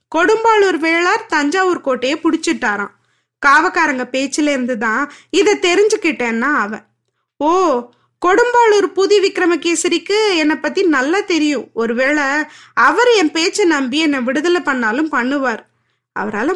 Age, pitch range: 20-39, 265-360 Hz